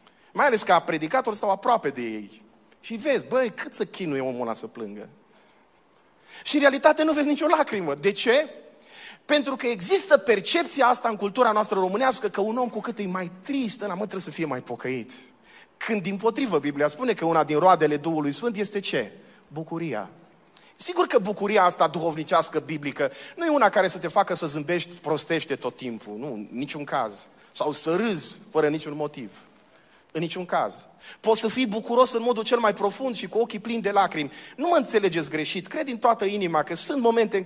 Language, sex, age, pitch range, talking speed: Romanian, male, 30-49, 165-235 Hz, 195 wpm